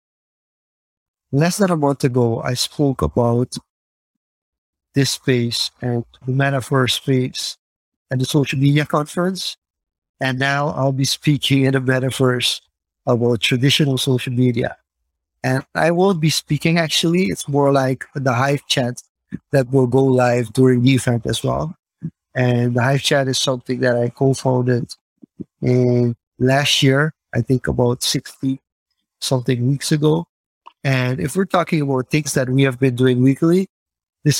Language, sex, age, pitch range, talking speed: English, male, 50-69, 125-140 Hz, 145 wpm